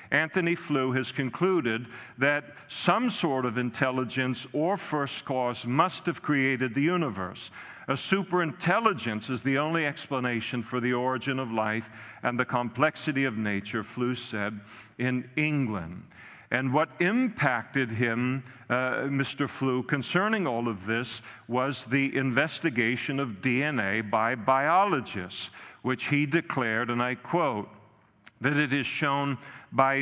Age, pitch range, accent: 50-69, 120-150 Hz, American